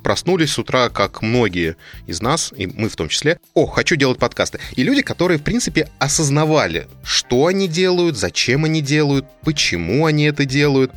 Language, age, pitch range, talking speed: Russian, 20-39, 100-145 Hz, 175 wpm